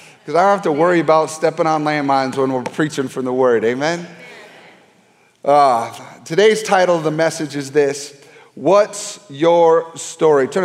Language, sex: English, male